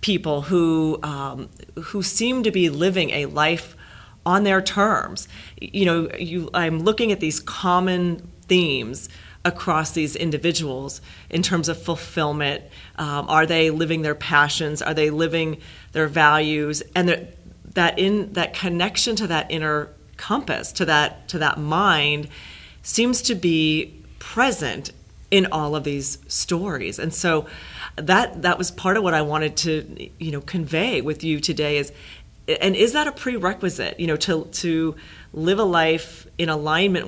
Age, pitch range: 40-59, 150-180 Hz